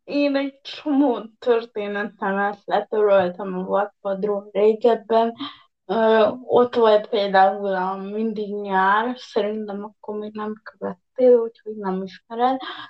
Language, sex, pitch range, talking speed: Hungarian, female, 205-245 Hz, 105 wpm